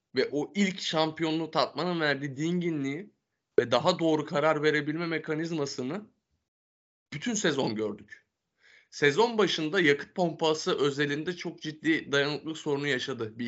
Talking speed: 120 wpm